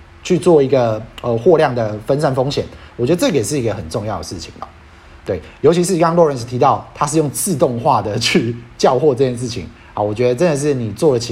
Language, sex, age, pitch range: Chinese, male, 30-49, 115-155 Hz